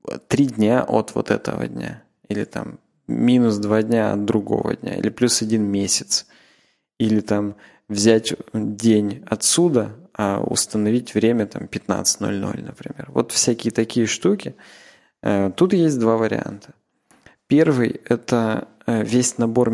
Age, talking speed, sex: 20-39, 125 wpm, male